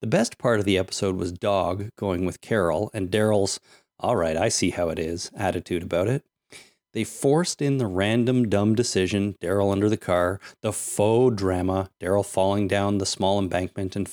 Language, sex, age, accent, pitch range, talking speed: English, male, 30-49, American, 95-120 Hz, 185 wpm